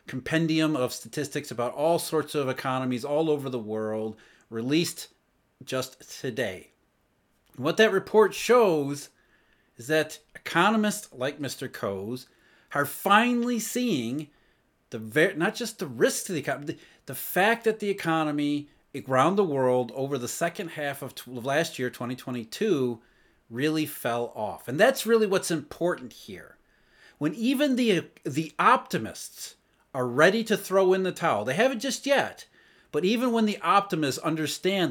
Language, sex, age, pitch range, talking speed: English, male, 30-49, 130-185 Hz, 145 wpm